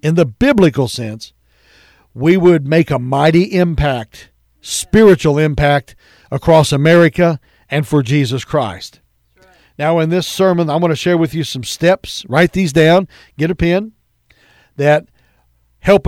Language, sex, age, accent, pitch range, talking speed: English, male, 60-79, American, 125-165 Hz, 140 wpm